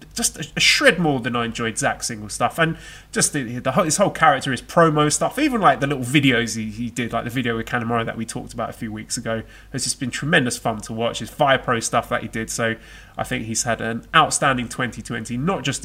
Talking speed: 250 wpm